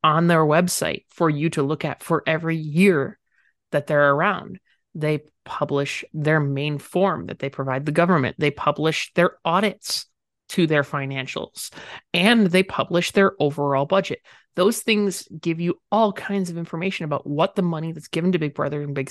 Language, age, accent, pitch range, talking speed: English, 30-49, American, 150-185 Hz, 175 wpm